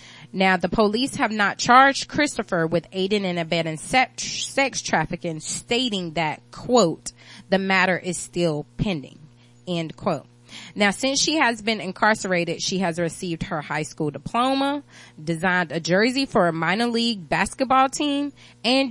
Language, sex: English, female